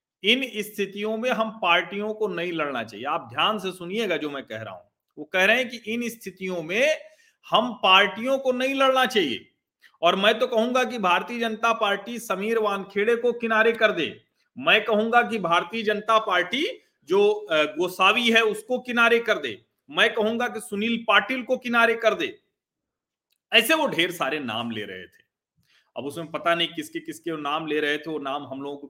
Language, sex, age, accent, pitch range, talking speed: Hindi, male, 40-59, native, 170-235 Hz, 190 wpm